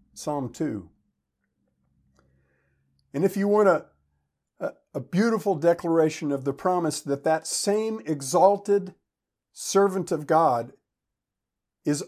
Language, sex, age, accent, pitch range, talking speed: English, male, 50-69, American, 120-170 Hz, 110 wpm